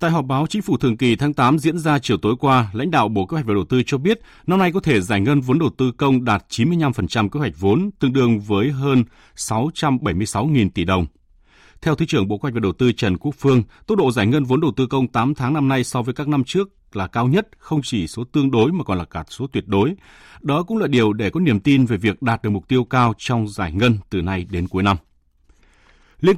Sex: male